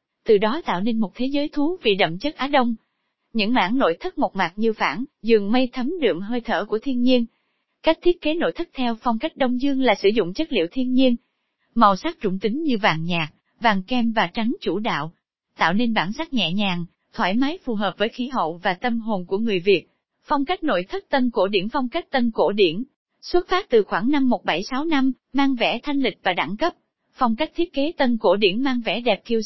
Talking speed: 235 wpm